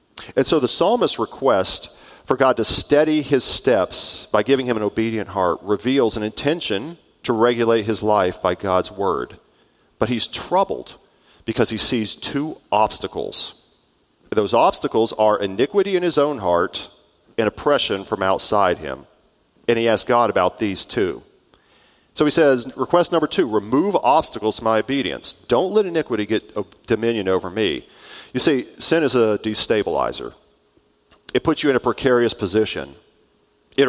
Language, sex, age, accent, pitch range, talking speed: English, male, 40-59, American, 105-135 Hz, 155 wpm